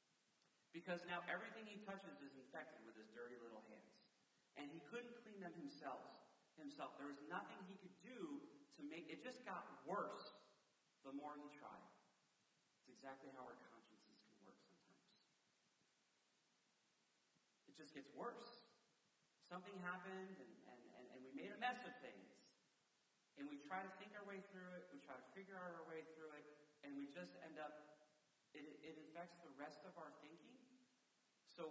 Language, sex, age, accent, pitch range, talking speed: English, male, 40-59, American, 145-190 Hz, 170 wpm